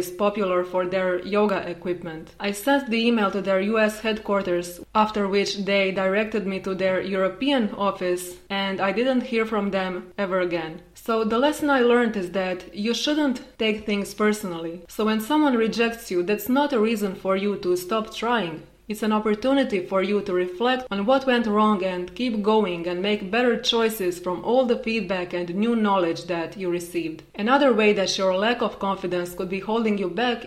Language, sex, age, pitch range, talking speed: English, female, 20-39, 185-225 Hz, 190 wpm